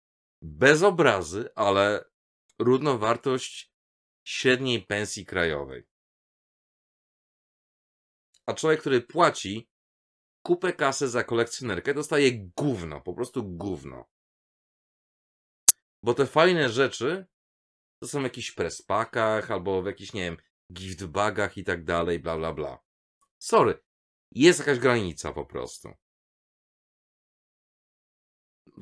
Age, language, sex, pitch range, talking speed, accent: 40-59, Polish, male, 90-125 Hz, 105 wpm, native